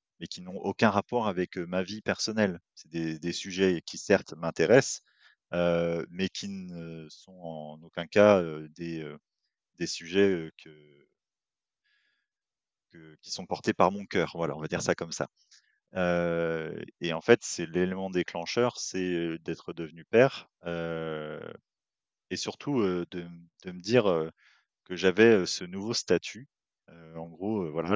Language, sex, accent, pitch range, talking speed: French, male, French, 80-100 Hz, 160 wpm